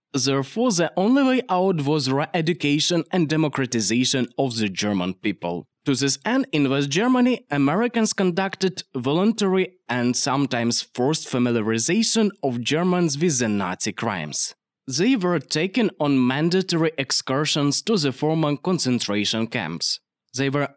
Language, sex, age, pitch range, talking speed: English, male, 20-39, 120-175 Hz, 130 wpm